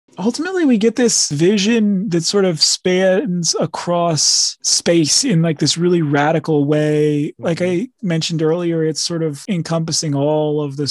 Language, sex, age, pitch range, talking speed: English, male, 30-49, 140-160 Hz, 155 wpm